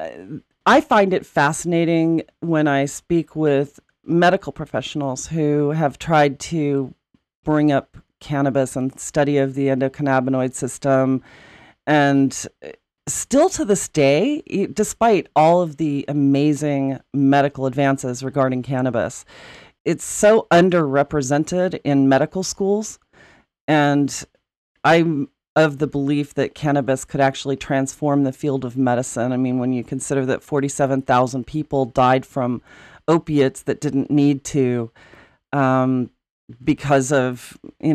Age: 40-59